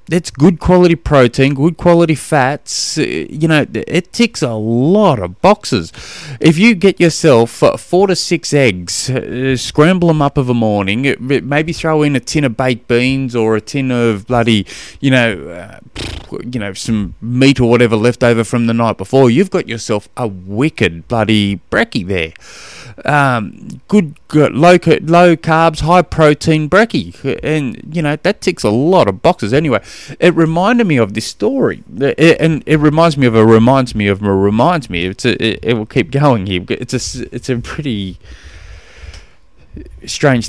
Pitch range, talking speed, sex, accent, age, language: 105-155 Hz, 170 wpm, male, Australian, 20-39, English